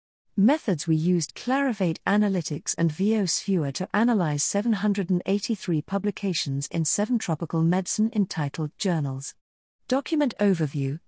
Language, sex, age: English, female, 40-59